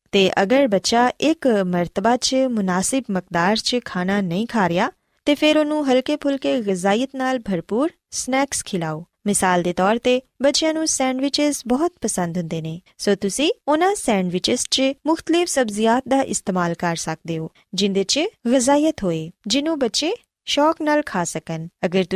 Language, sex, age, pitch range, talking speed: Punjabi, female, 20-39, 185-280 Hz, 115 wpm